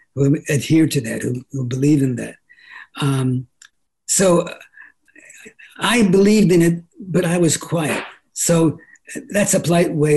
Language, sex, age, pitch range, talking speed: English, male, 60-79, 145-190 Hz, 140 wpm